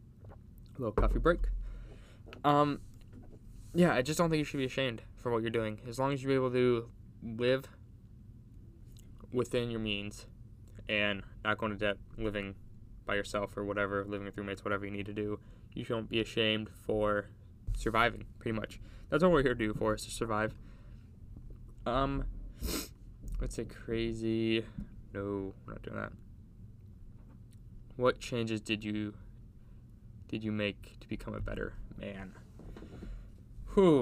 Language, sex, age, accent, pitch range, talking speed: English, male, 10-29, American, 105-115 Hz, 150 wpm